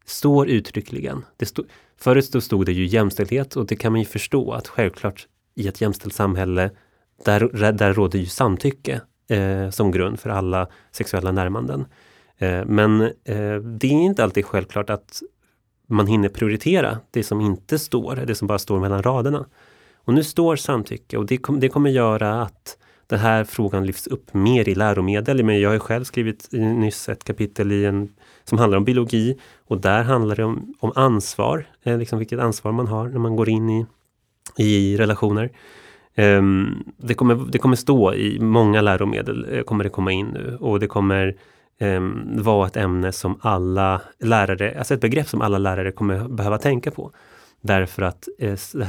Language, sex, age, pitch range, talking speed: Swedish, male, 30-49, 100-120 Hz, 180 wpm